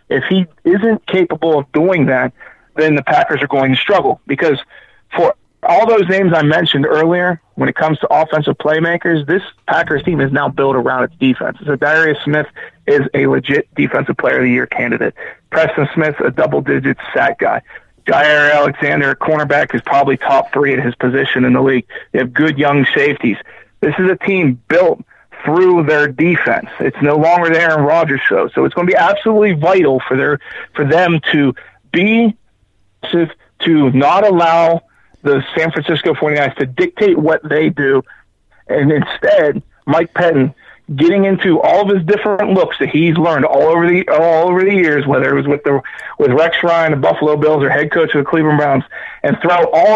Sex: male